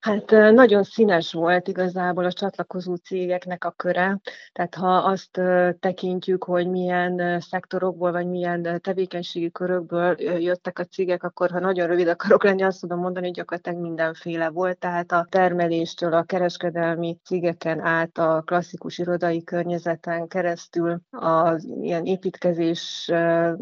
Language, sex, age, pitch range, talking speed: Hungarian, female, 30-49, 175-190 Hz, 130 wpm